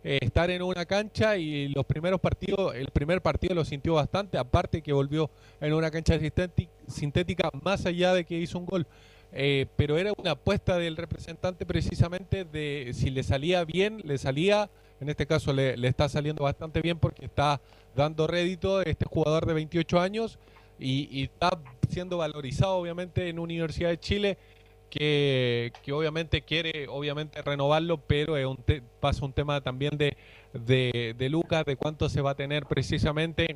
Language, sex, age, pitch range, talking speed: Spanish, male, 30-49, 130-175 Hz, 175 wpm